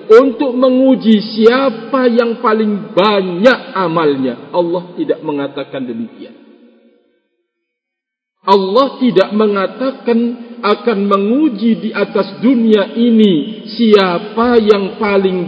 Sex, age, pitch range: male, 50-69, 165-230 Hz